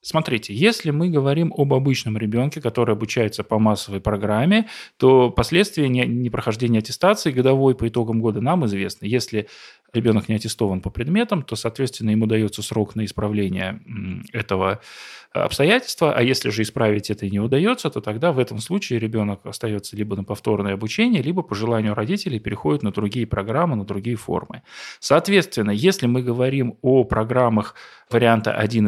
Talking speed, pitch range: 155 wpm, 105-135 Hz